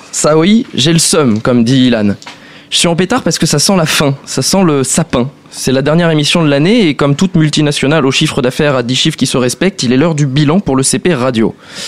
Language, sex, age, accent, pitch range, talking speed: French, male, 20-39, French, 130-170 Hz, 255 wpm